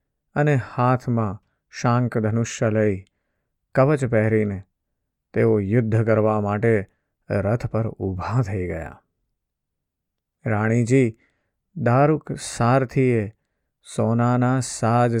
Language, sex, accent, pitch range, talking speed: Gujarati, male, native, 105-120 Hz, 75 wpm